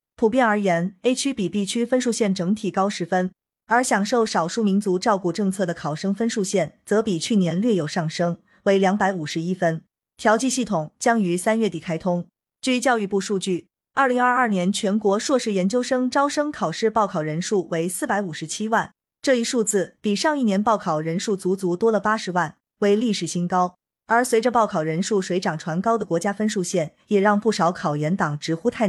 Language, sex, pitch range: Chinese, female, 180-220 Hz